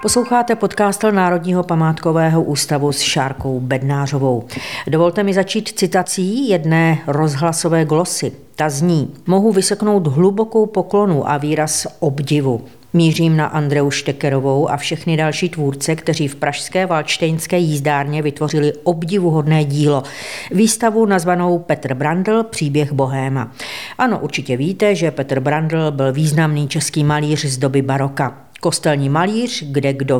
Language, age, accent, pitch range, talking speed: Czech, 40-59, native, 140-180 Hz, 125 wpm